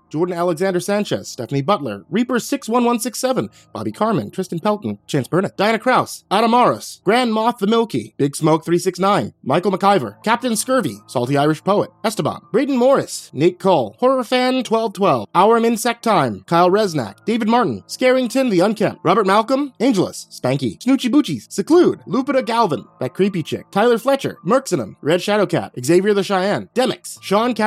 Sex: male